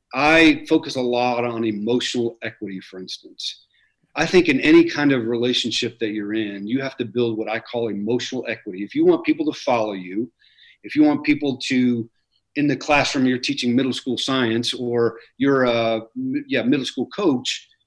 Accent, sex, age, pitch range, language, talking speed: American, male, 40-59, 120-145 Hz, English, 185 wpm